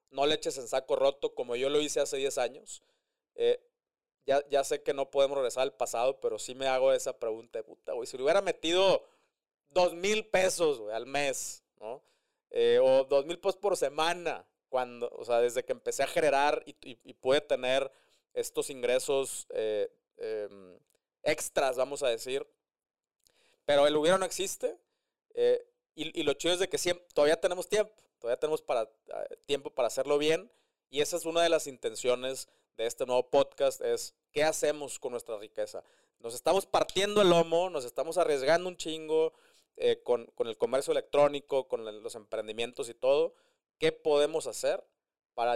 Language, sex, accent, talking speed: Spanish, male, Mexican, 180 wpm